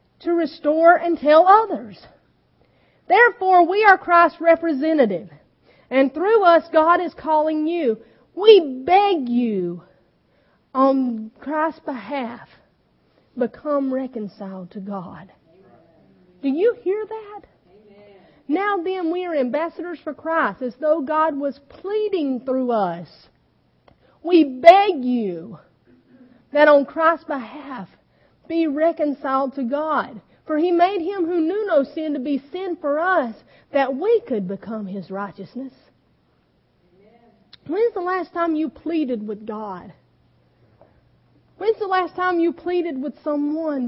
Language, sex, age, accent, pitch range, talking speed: English, female, 40-59, American, 235-335 Hz, 125 wpm